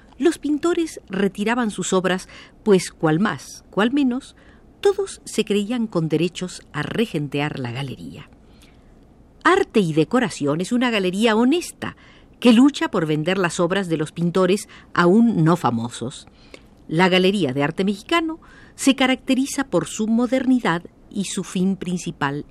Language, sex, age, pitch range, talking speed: Spanish, female, 50-69, 155-230 Hz, 140 wpm